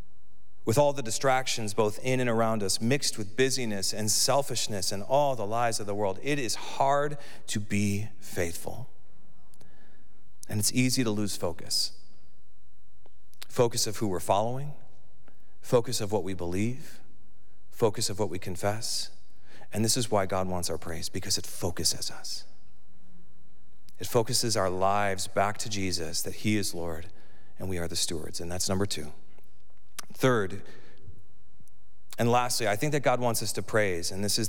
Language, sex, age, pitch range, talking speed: English, male, 40-59, 95-125 Hz, 165 wpm